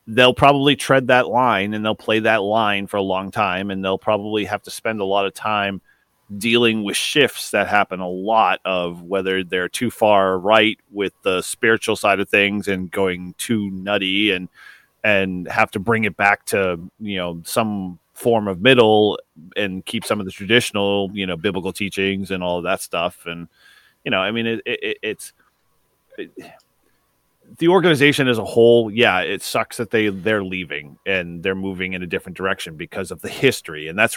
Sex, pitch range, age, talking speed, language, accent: male, 95-120 Hz, 30-49, 195 wpm, English, American